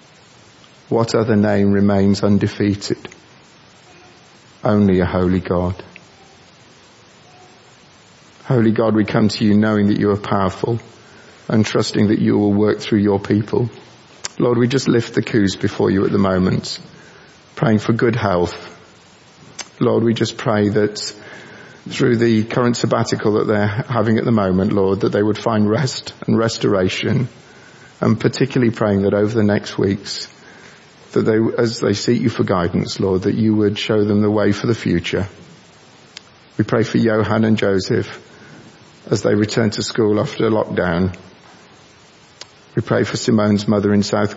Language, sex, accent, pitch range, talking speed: English, male, British, 100-115 Hz, 155 wpm